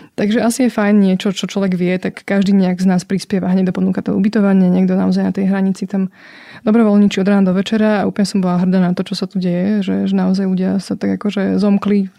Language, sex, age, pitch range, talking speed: Slovak, female, 20-39, 190-220 Hz, 245 wpm